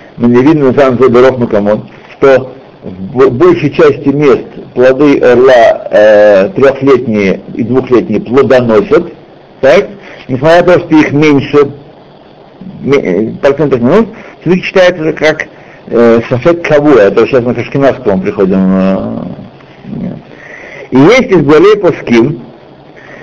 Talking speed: 100 wpm